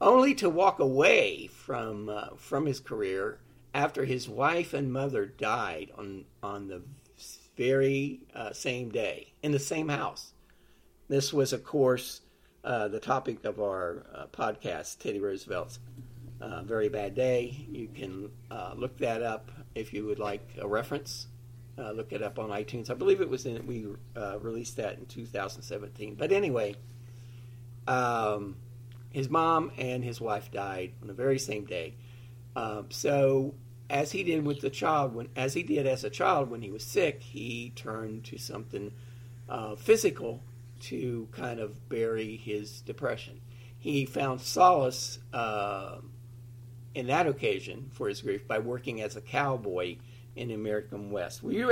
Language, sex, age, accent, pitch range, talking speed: English, male, 50-69, American, 110-135 Hz, 165 wpm